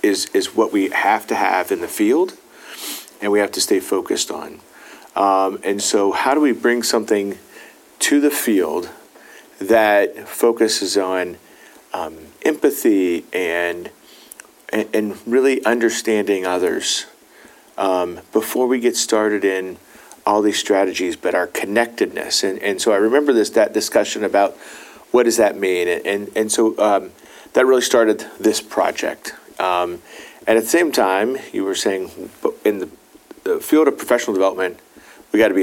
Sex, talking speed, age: male, 160 wpm, 40-59